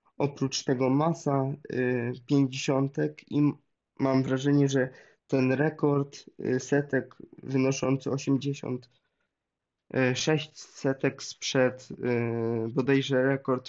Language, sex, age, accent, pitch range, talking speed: Polish, male, 20-39, native, 130-145 Hz, 75 wpm